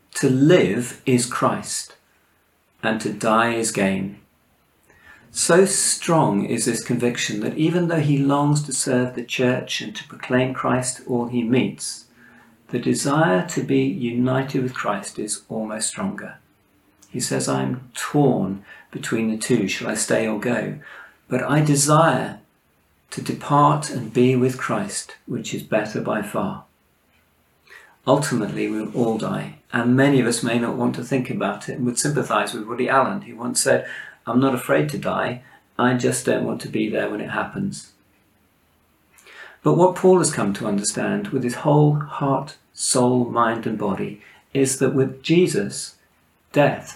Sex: male